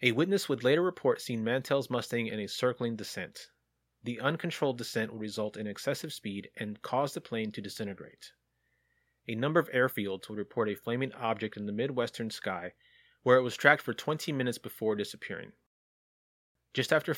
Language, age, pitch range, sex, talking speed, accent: English, 30-49, 105-130 Hz, male, 175 wpm, American